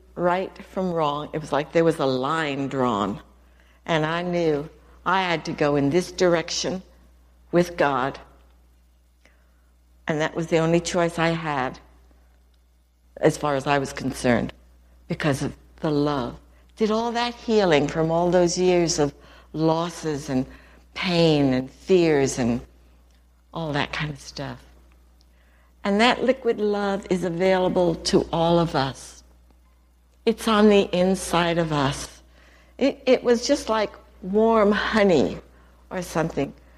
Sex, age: female, 60-79